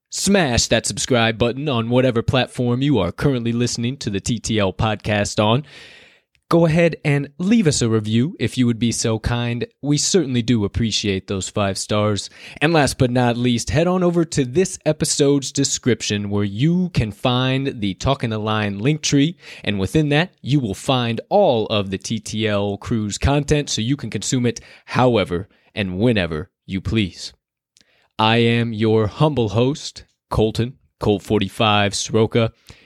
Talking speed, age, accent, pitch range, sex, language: 160 wpm, 20-39, American, 105-140 Hz, male, English